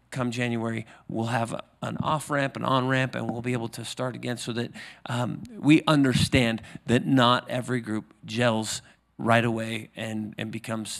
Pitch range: 110-130 Hz